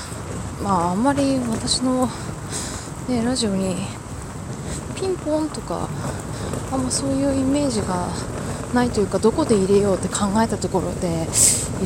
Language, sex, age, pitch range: Japanese, female, 20-39, 140-235 Hz